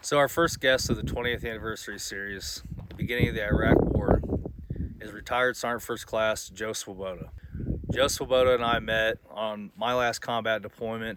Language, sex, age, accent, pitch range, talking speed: English, male, 30-49, American, 100-120 Hz, 165 wpm